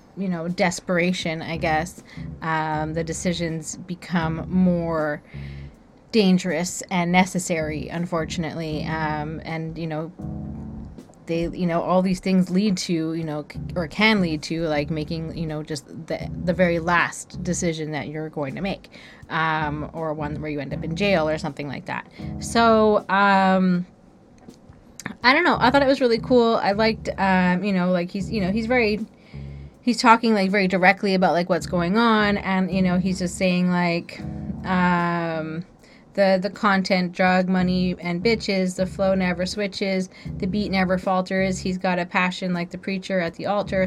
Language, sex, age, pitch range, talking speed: English, female, 20-39, 165-195 Hz, 170 wpm